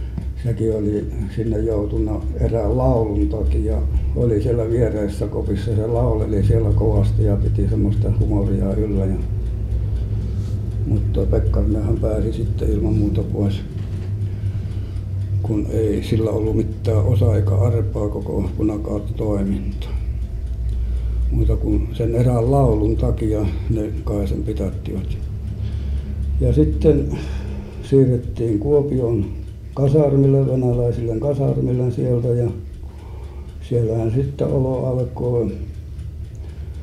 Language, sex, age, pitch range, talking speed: Finnish, male, 60-79, 95-115 Hz, 95 wpm